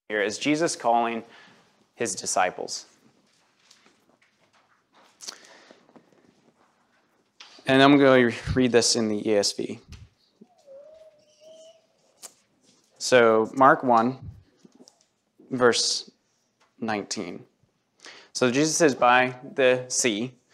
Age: 20-39